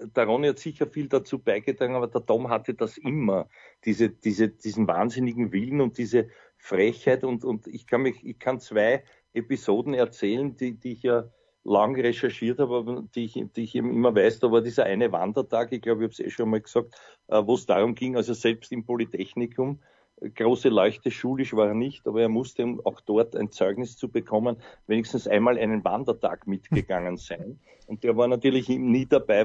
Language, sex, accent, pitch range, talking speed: German, male, Austrian, 115-125 Hz, 185 wpm